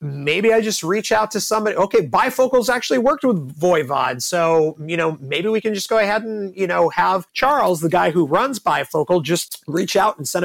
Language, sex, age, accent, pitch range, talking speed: English, male, 30-49, American, 150-205 Hz, 215 wpm